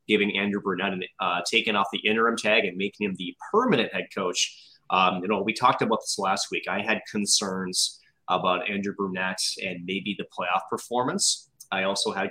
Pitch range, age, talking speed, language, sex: 95-110 Hz, 30-49, 190 wpm, English, male